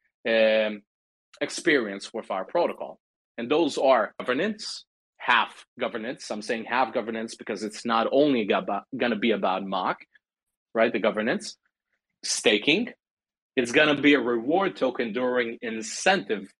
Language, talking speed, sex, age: English, 135 wpm, male, 40-59